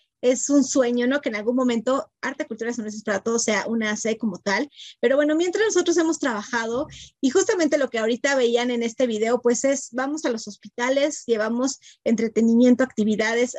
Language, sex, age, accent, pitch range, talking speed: Spanish, female, 30-49, Mexican, 225-260 Hz, 190 wpm